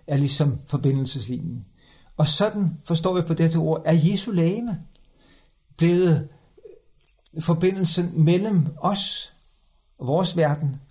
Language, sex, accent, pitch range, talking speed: Danish, male, native, 145-180 Hz, 105 wpm